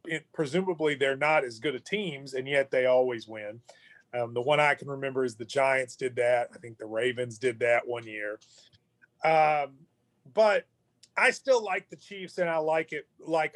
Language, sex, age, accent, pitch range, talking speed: English, male, 30-49, American, 150-205 Hz, 185 wpm